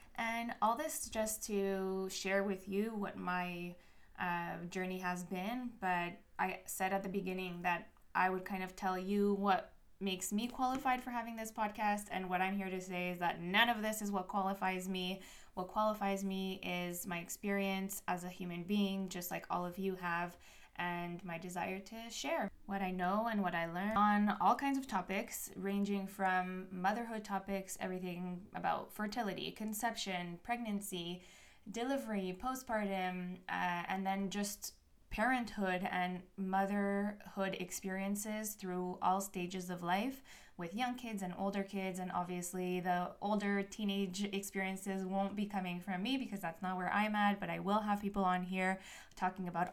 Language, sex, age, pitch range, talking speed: English, female, 20-39, 180-205 Hz, 170 wpm